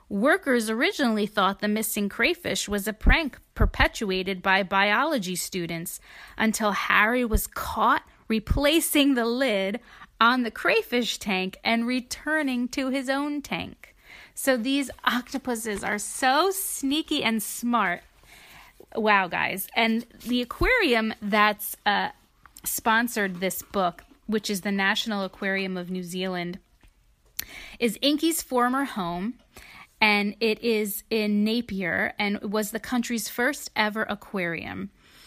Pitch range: 195-245 Hz